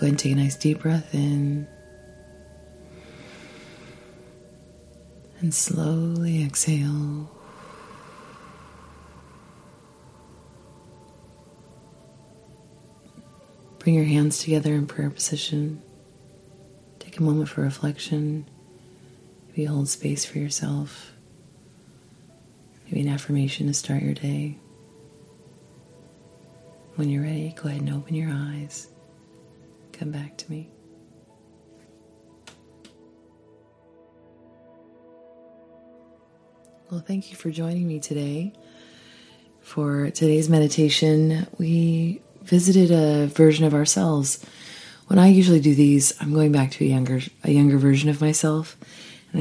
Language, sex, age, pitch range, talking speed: English, female, 30-49, 110-160 Hz, 100 wpm